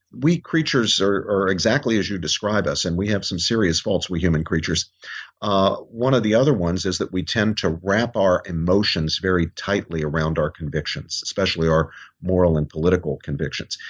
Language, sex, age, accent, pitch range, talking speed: English, male, 50-69, American, 85-105 Hz, 185 wpm